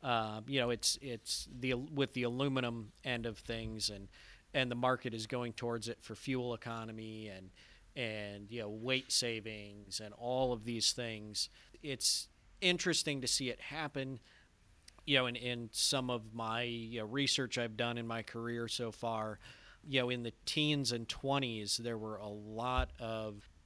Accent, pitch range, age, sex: American, 110-125 Hz, 40-59, male